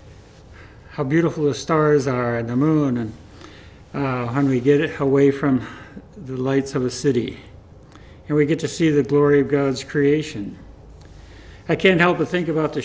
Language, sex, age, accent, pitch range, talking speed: English, male, 60-79, American, 110-150 Hz, 175 wpm